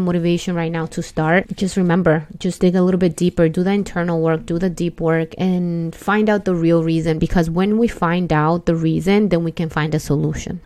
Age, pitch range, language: 20-39, 165-195 Hz, English